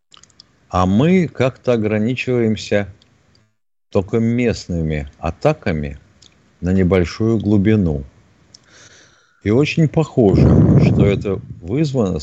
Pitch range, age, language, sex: 95-120 Hz, 50-69, Russian, male